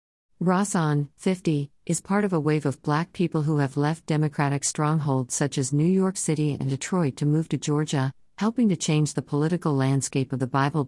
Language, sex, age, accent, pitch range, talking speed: English, female, 50-69, American, 130-155 Hz, 195 wpm